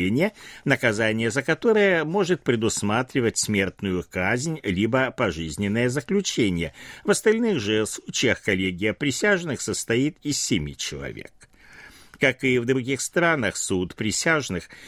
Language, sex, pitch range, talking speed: Russian, male, 105-155 Hz, 110 wpm